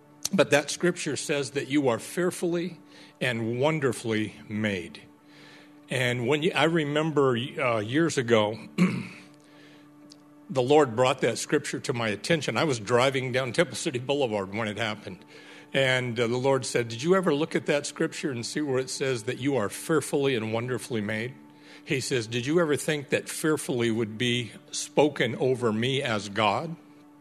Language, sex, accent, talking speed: English, male, American, 170 wpm